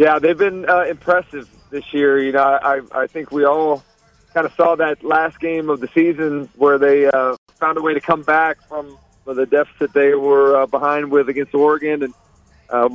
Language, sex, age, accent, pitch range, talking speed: English, male, 40-59, American, 140-165 Hz, 205 wpm